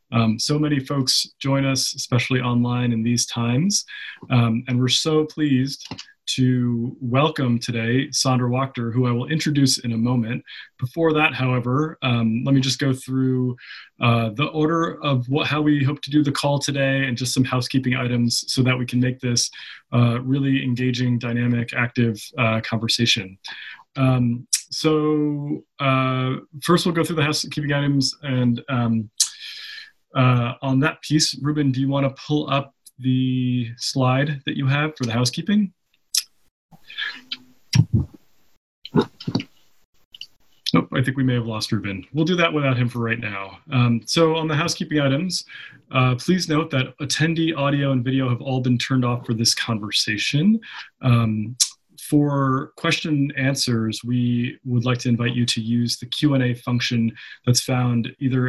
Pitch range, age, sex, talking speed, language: 120-145 Hz, 20-39, male, 160 wpm, English